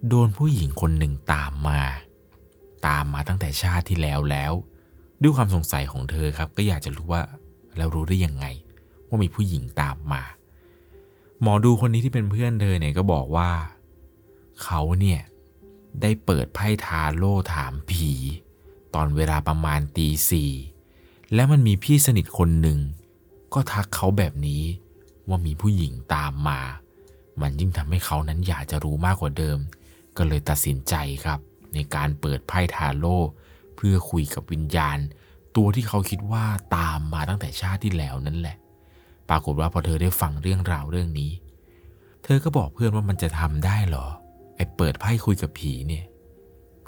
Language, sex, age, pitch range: Thai, male, 30-49, 75-95 Hz